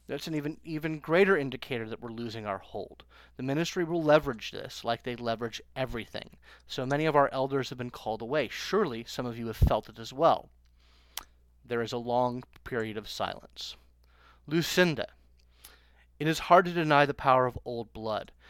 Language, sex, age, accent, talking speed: English, male, 30-49, American, 180 wpm